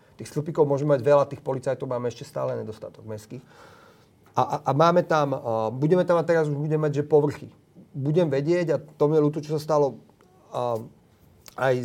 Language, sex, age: Slovak, male, 40-59